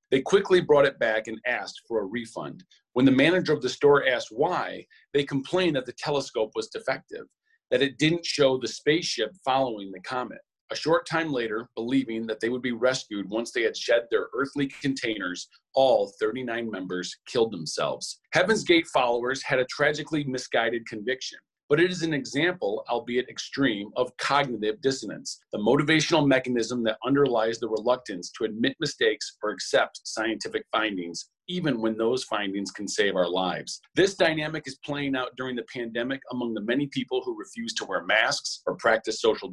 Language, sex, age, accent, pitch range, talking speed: English, male, 40-59, American, 120-160 Hz, 175 wpm